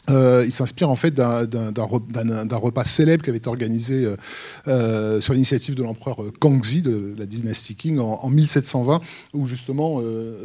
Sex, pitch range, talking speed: male, 120-140 Hz, 180 wpm